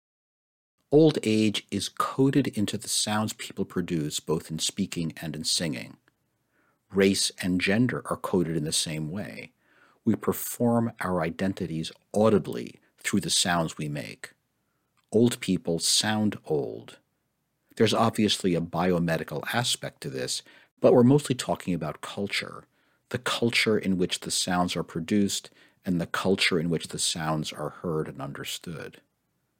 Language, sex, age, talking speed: English, male, 50-69, 140 wpm